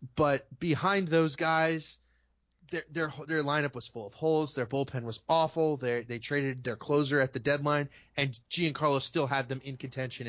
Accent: American